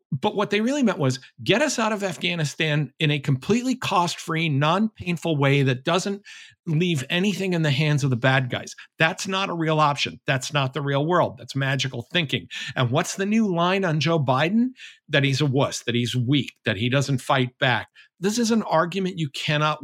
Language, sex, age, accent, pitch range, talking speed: English, male, 50-69, American, 130-185 Hz, 205 wpm